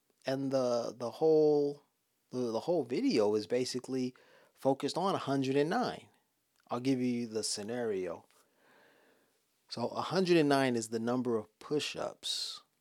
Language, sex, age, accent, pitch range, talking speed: English, male, 30-49, American, 105-135 Hz, 110 wpm